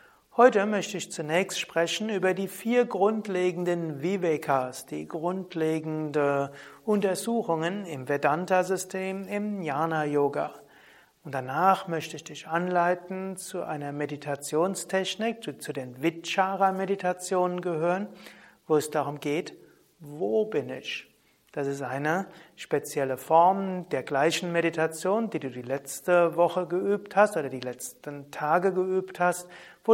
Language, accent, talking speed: German, German, 120 wpm